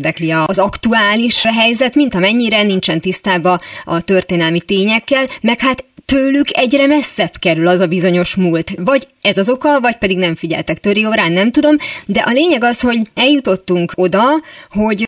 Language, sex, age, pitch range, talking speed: Hungarian, female, 30-49, 180-245 Hz, 160 wpm